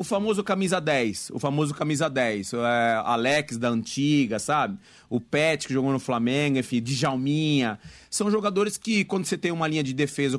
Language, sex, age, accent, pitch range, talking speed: Portuguese, male, 30-49, Brazilian, 125-165 Hz, 175 wpm